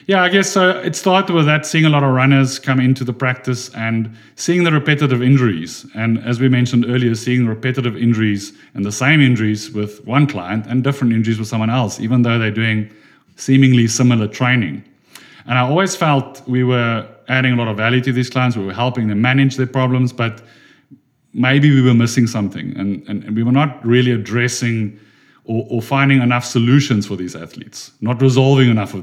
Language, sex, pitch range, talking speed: English, male, 110-135 Hz, 200 wpm